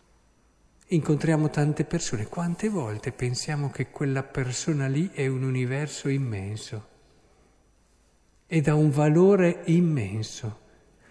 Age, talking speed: 50-69, 105 wpm